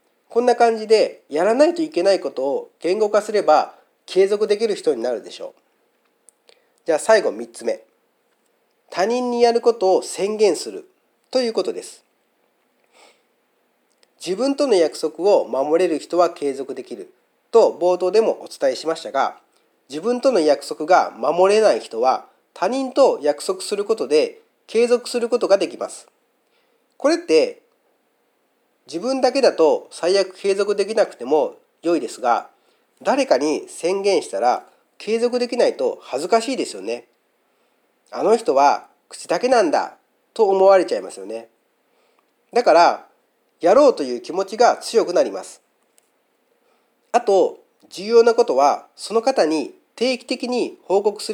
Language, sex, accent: Japanese, male, native